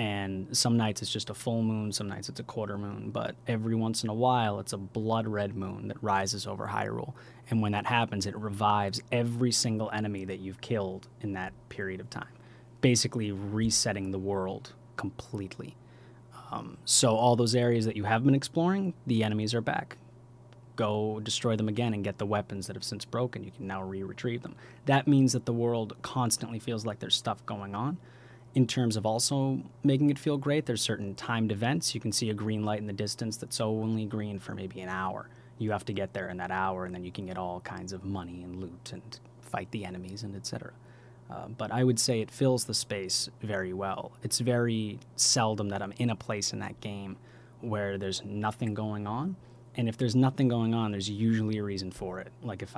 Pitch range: 100-120 Hz